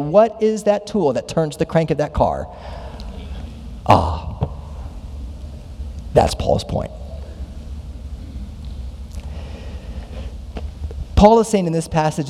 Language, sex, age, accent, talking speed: English, male, 40-59, American, 105 wpm